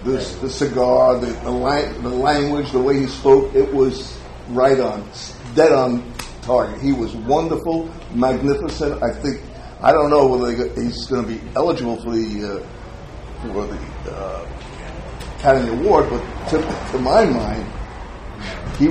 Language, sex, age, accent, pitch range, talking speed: English, male, 50-69, American, 105-150 Hz, 150 wpm